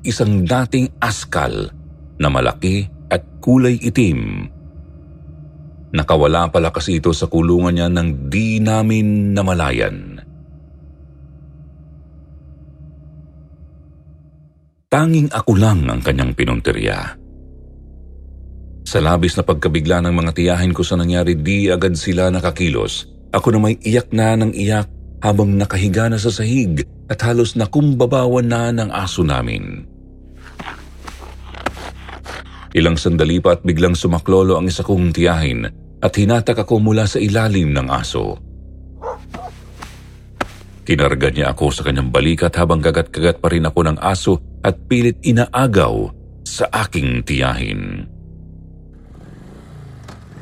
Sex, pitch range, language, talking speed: male, 75-100 Hz, Filipino, 110 wpm